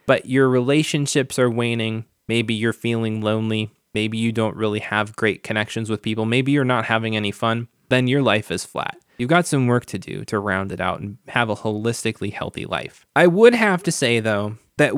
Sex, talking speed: male, 210 wpm